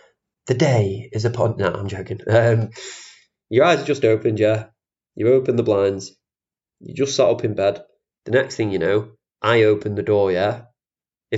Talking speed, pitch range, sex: 190 wpm, 110-125 Hz, male